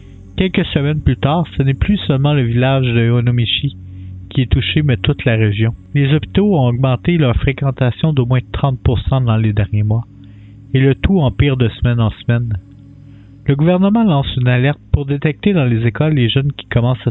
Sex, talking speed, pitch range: male, 190 wpm, 110-140 Hz